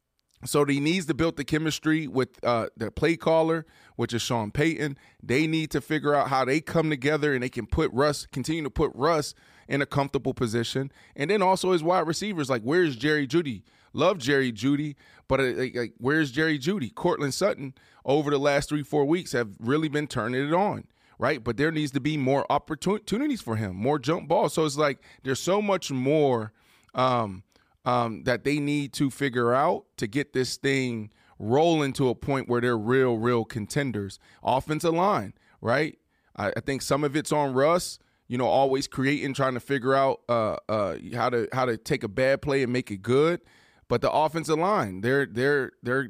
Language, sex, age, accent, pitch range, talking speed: English, male, 20-39, American, 125-155 Hz, 195 wpm